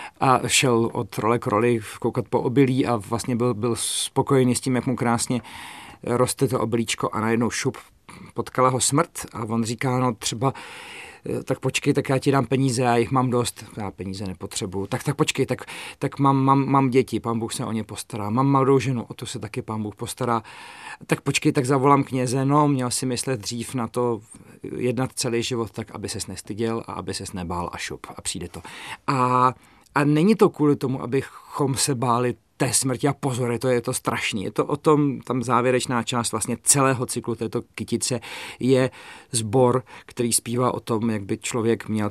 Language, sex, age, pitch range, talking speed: Czech, male, 40-59, 115-135 Hz, 195 wpm